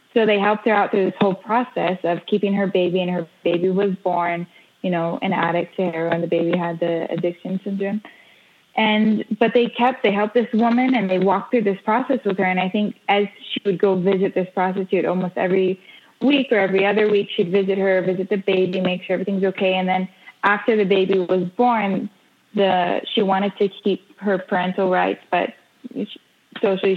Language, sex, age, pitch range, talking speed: English, female, 20-39, 185-210 Hz, 200 wpm